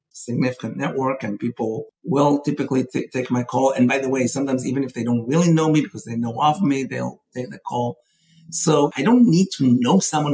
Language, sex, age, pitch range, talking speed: English, male, 50-69, 135-185 Hz, 220 wpm